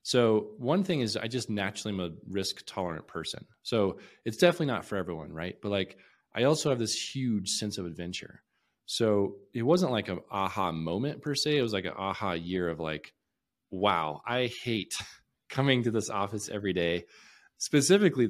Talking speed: 180 wpm